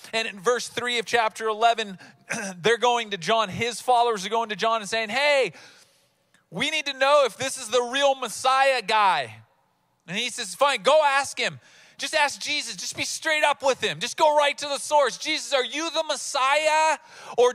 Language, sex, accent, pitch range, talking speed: English, male, American, 165-265 Hz, 200 wpm